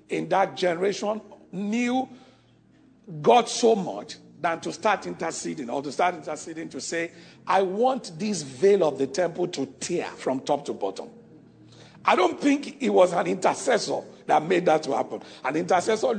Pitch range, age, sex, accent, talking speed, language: 150-225 Hz, 50-69, male, Nigerian, 165 wpm, English